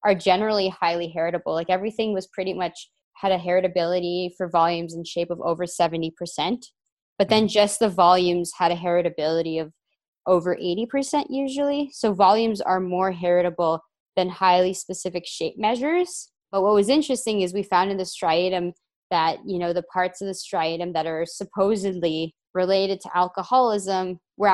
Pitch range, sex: 170-195 Hz, female